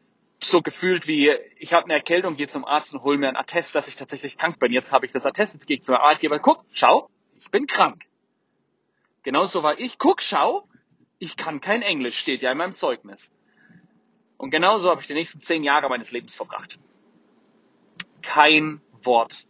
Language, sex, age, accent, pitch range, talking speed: German, male, 30-49, German, 125-170 Hz, 190 wpm